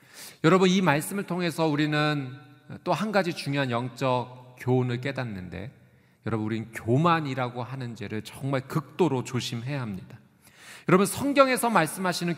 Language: Korean